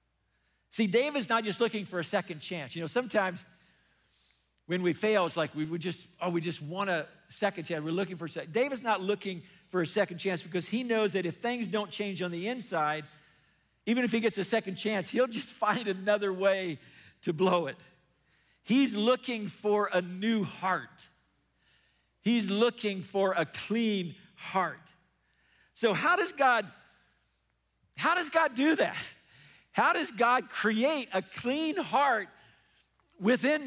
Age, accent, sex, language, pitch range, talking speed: 50-69, American, male, English, 180-235 Hz, 170 wpm